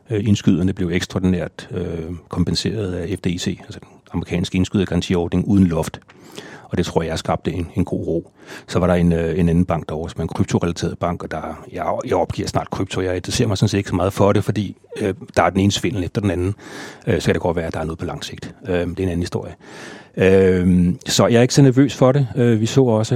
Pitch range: 90-105 Hz